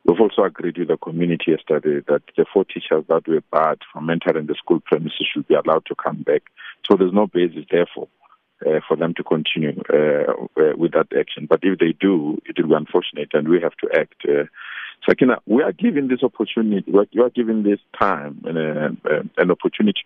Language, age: English, 50-69